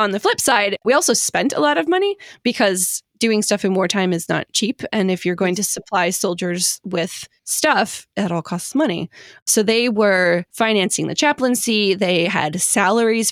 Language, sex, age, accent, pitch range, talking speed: English, female, 20-39, American, 180-225 Hz, 185 wpm